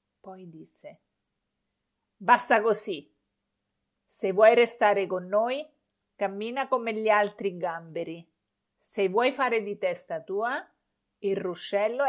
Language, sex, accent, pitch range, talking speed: Italian, female, native, 175-220 Hz, 110 wpm